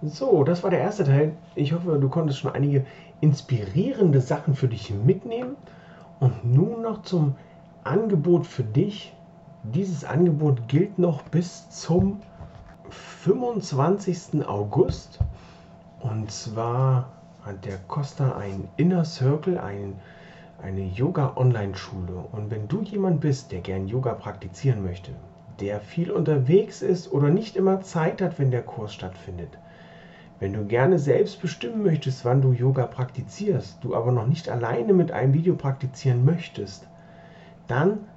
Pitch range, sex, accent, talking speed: 125-170 Hz, male, German, 135 wpm